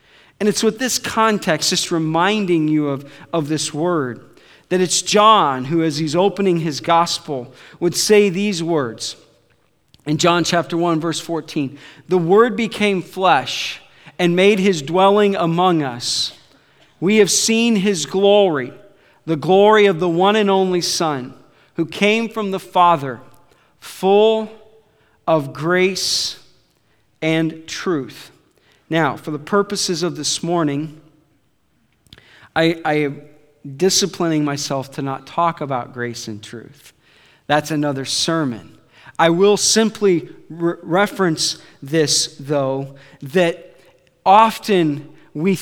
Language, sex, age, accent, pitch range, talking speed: English, male, 40-59, American, 145-190 Hz, 125 wpm